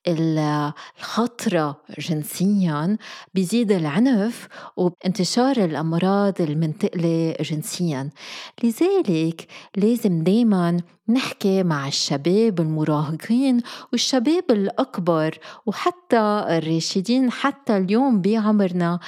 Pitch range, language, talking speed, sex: 165-225 Hz, Arabic, 70 wpm, female